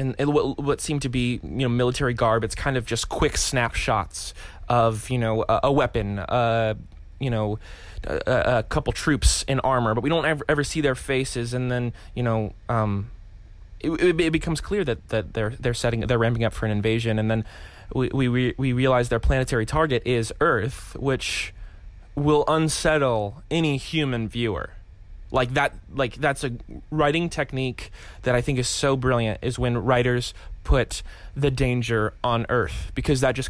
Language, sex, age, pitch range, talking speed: English, male, 20-39, 100-130 Hz, 180 wpm